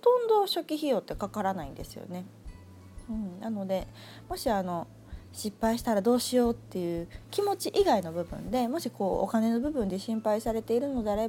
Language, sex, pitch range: Japanese, female, 185-245 Hz